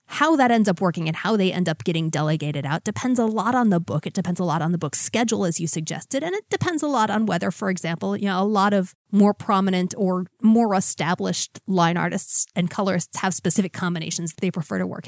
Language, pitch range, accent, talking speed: English, 175-220 Hz, American, 245 wpm